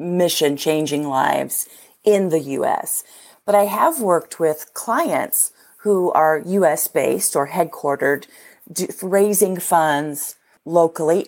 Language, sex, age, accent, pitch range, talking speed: English, female, 40-59, American, 155-205 Hz, 100 wpm